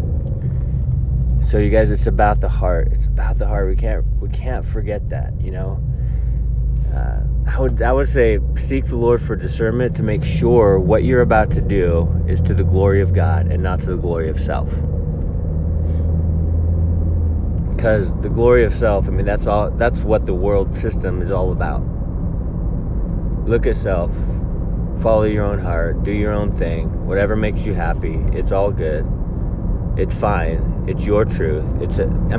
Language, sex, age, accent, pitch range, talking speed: English, male, 20-39, American, 85-110 Hz, 175 wpm